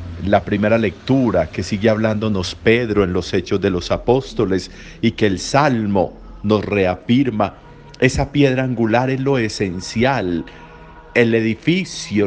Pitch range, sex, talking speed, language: 100-130 Hz, male, 130 wpm, Spanish